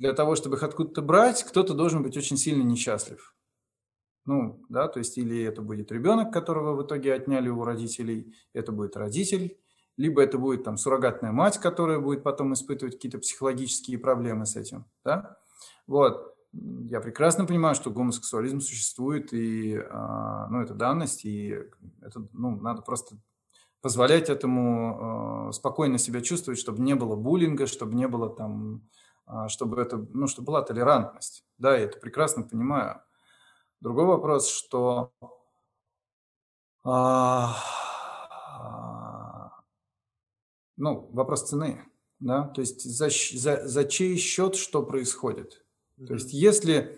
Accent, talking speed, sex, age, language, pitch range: native, 135 wpm, male, 20-39, Russian, 115-145 Hz